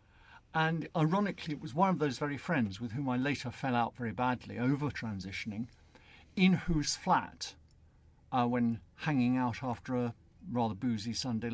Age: 60-79